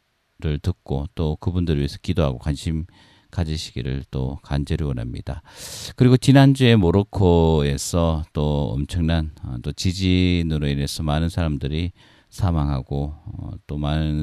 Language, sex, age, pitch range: Korean, male, 40-59, 75-95 Hz